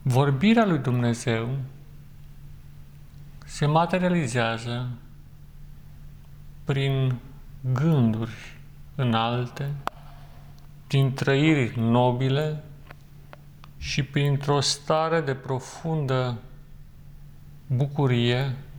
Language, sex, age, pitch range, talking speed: Romanian, male, 40-59, 125-145 Hz, 55 wpm